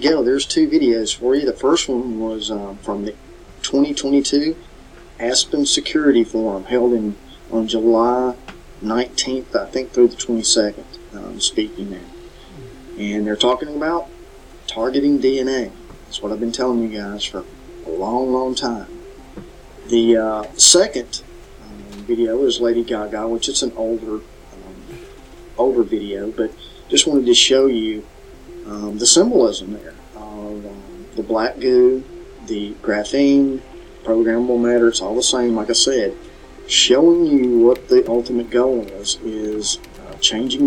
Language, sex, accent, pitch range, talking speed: English, male, American, 110-140 Hz, 145 wpm